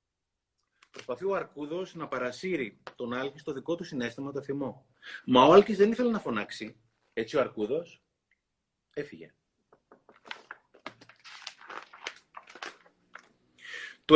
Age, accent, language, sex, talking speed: 30-49, native, Greek, male, 105 wpm